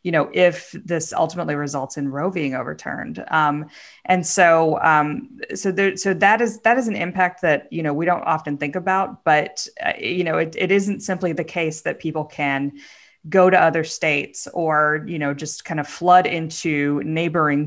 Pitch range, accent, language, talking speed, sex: 145-175 Hz, American, English, 195 wpm, female